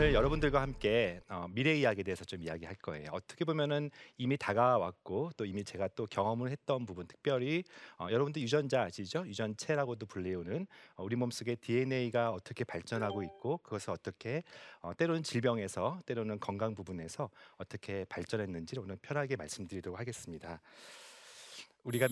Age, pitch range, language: 40-59, 100-145 Hz, Korean